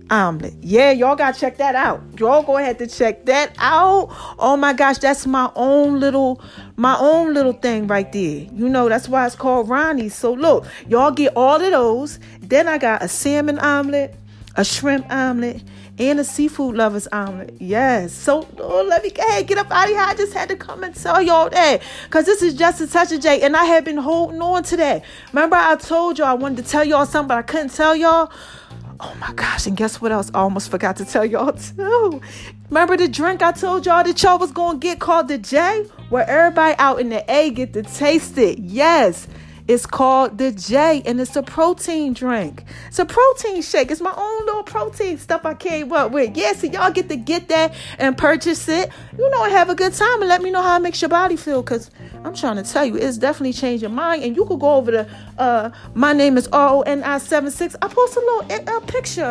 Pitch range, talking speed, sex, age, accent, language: 255-345 Hz, 225 wpm, female, 40-59, American, English